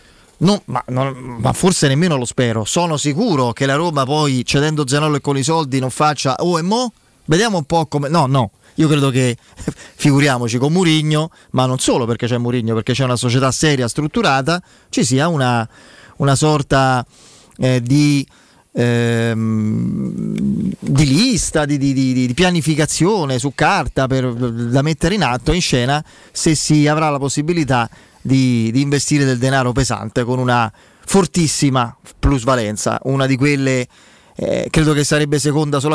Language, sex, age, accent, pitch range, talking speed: Italian, male, 30-49, native, 120-150 Hz, 165 wpm